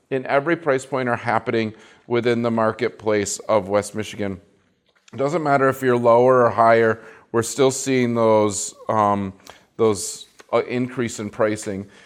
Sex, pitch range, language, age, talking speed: male, 105-125 Hz, English, 40-59, 145 wpm